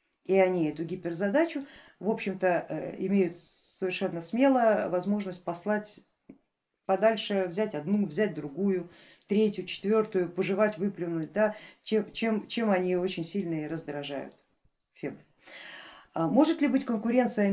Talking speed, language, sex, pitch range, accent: 120 wpm, Russian, female, 185-225 Hz, native